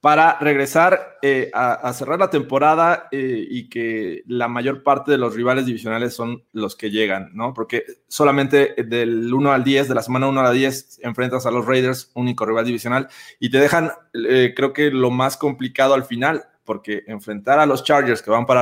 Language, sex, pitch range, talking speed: Spanish, male, 115-140 Hz, 195 wpm